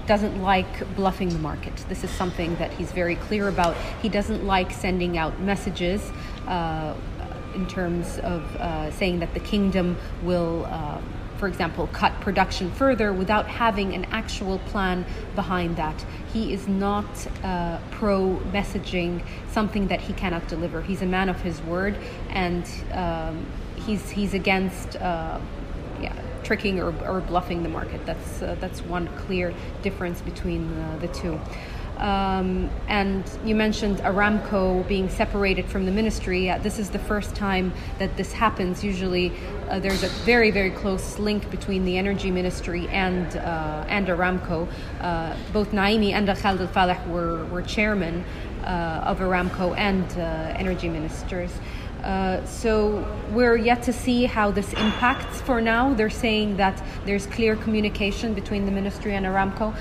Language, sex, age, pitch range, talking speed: English, female, 30-49, 180-210 Hz, 155 wpm